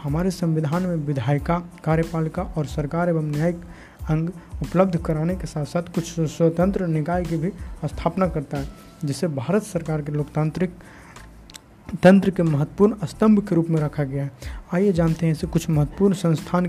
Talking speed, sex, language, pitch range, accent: 160 wpm, male, Hindi, 155-180 Hz, native